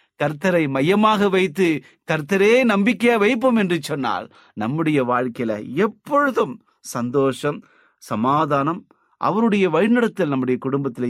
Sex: male